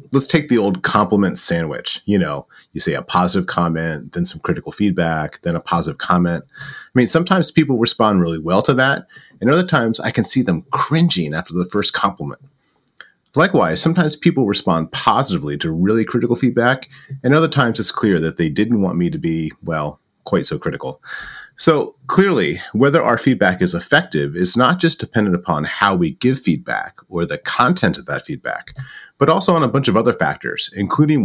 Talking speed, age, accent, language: 190 wpm, 30-49, American, English